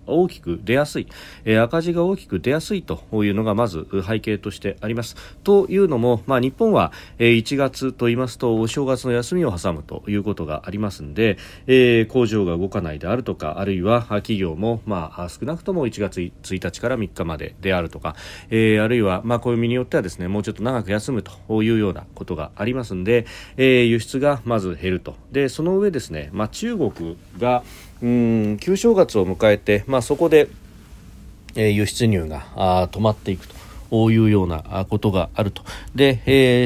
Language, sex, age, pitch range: Japanese, male, 40-59, 95-125 Hz